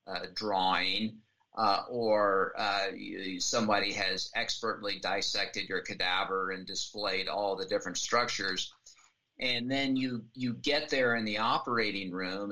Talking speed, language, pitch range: 135 wpm, English, 100-130 Hz